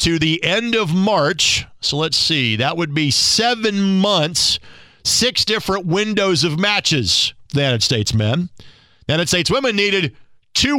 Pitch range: 130-190 Hz